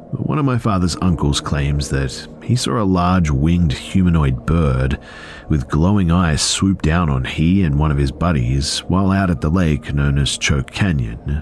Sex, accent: male, Australian